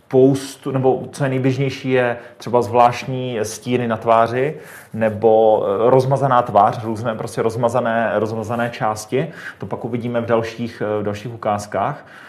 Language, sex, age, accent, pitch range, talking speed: Czech, male, 30-49, native, 115-130 Hz, 130 wpm